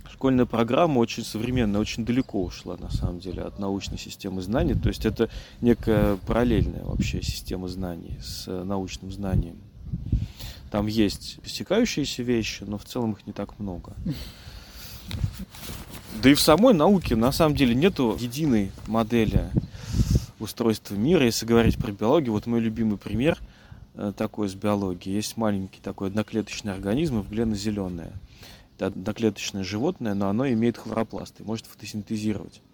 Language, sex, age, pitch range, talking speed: Russian, male, 30-49, 95-115 Hz, 135 wpm